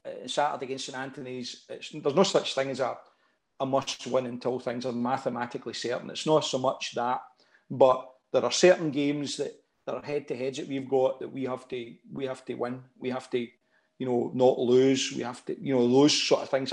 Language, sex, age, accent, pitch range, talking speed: English, male, 40-59, British, 125-135 Hz, 220 wpm